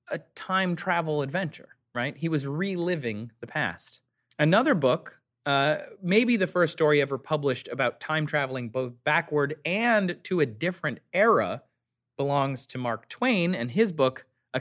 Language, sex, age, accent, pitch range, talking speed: English, male, 30-49, American, 125-175 Hz, 150 wpm